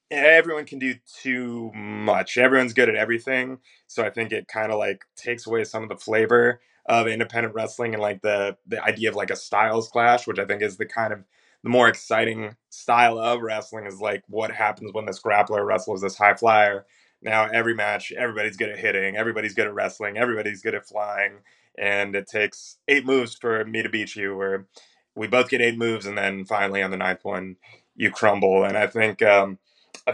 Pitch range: 105-120 Hz